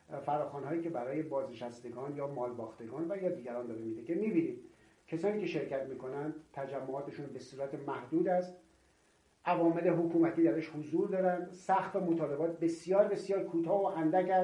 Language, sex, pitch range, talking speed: Persian, male, 135-185 Hz, 145 wpm